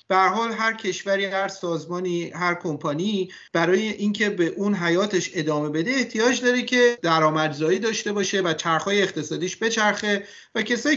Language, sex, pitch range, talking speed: Persian, male, 165-215 Hz, 140 wpm